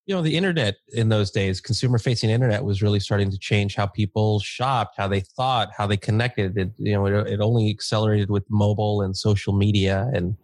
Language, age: English, 30-49